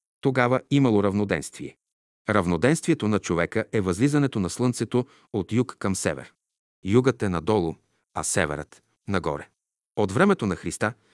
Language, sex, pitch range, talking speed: Bulgarian, male, 95-125 Hz, 135 wpm